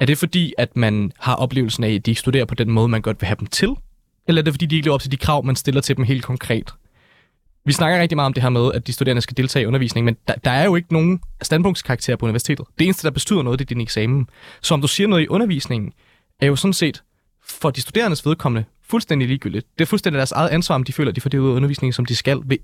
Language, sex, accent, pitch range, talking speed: Danish, male, native, 125-160 Hz, 285 wpm